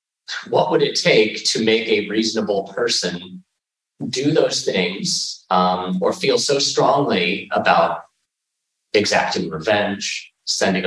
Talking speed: 115 wpm